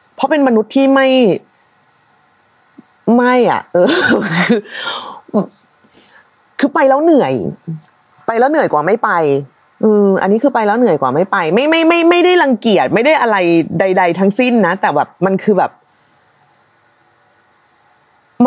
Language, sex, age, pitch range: Thai, female, 30-49, 190-250 Hz